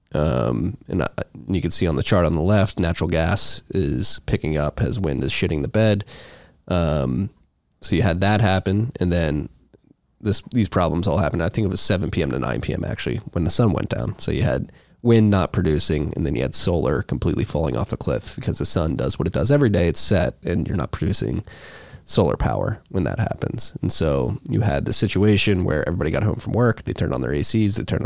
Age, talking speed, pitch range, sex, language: 20-39, 230 wpm, 85-110 Hz, male, English